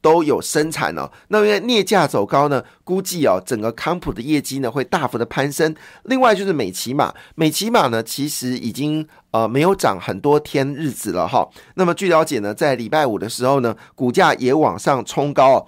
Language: Chinese